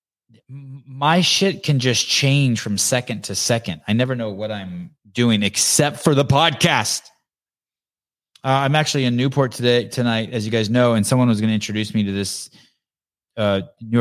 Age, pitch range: 20-39, 95-125 Hz